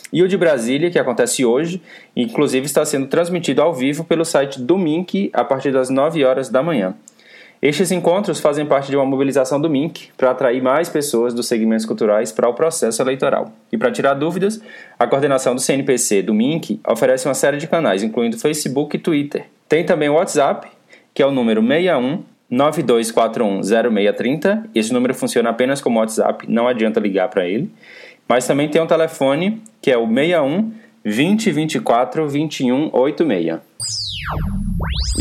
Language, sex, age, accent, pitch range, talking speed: Portuguese, male, 20-39, Brazilian, 125-175 Hz, 160 wpm